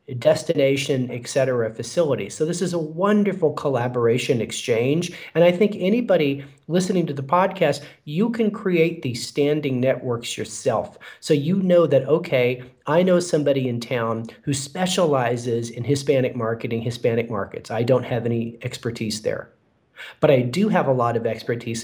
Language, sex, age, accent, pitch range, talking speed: English, male, 40-59, American, 125-175 Hz, 155 wpm